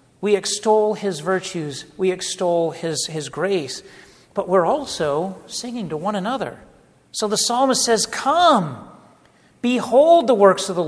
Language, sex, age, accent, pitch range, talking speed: English, male, 40-59, American, 160-215 Hz, 145 wpm